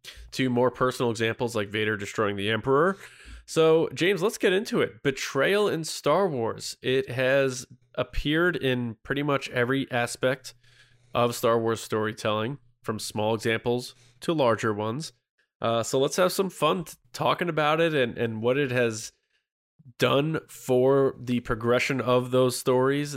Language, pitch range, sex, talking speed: English, 120-140 Hz, male, 150 wpm